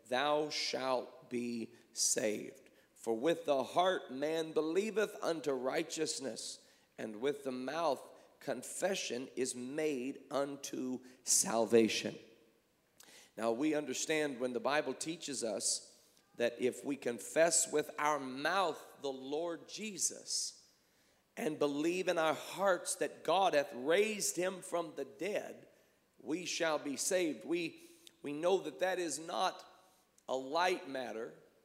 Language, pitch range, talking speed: English, 130-160 Hz, 125 wpm